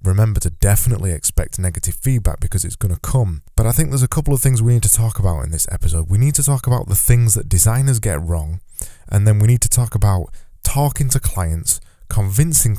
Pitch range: 90-115 Hz